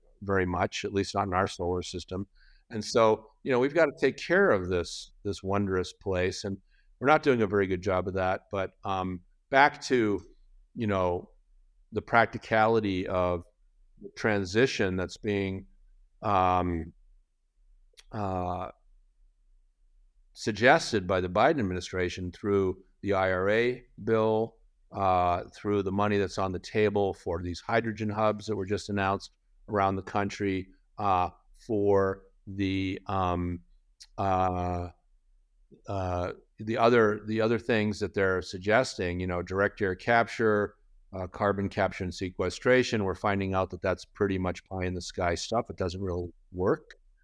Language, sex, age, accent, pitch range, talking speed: English, male, 50-69, American, 90-105 Hz, 145 wpm